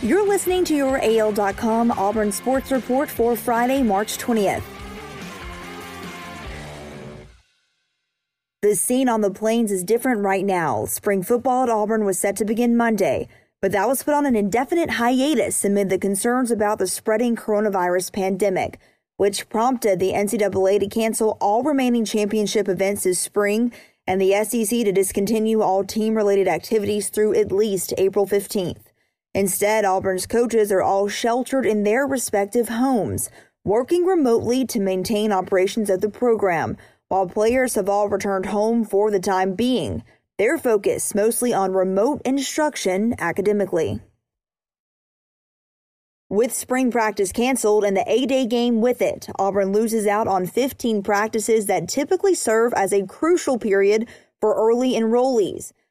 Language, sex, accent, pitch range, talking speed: English, female, American, 195-240 Hz, 140 wpm